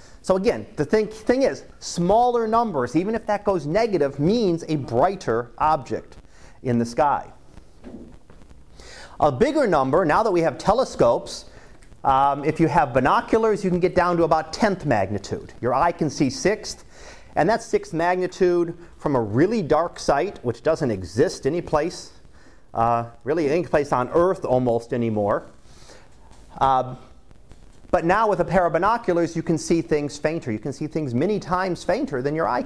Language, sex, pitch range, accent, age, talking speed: English, male, 135-195 Hz, American, 40-59, 165 wpm